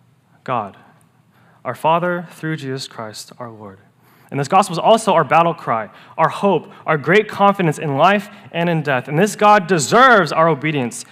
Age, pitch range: 20-39, 145-200 Hz